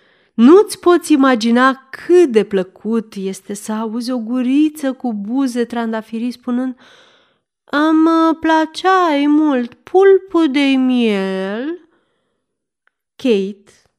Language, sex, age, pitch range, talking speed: Romanian, female, 30-49, 195-275 Hz, 95 wpm